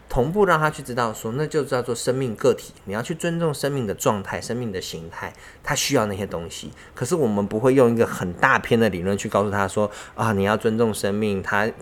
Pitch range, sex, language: 100-140 Hz, male, Chinese